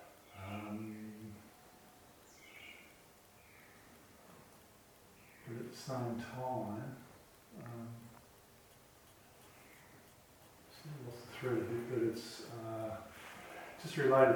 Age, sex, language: 50-69, male, English